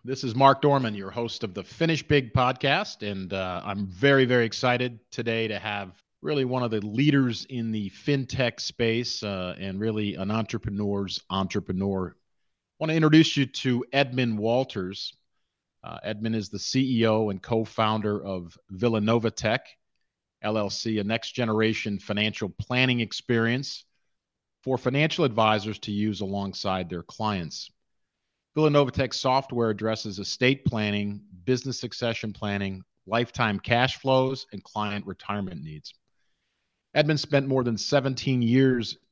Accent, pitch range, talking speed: American, 100-130 Hz, 135 wpm